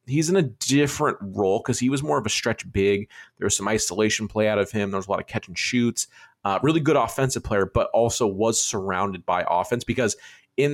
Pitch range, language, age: 100-130 Hz, English, 30-49